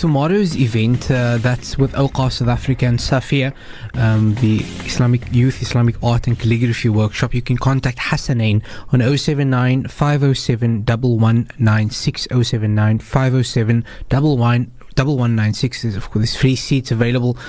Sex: male